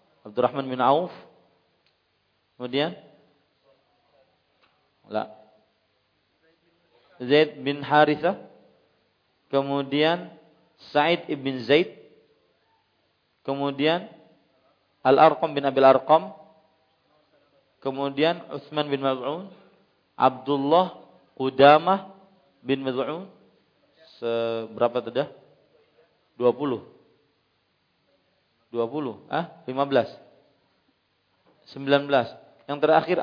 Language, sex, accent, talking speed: English, male, Indonesian, 70 wpm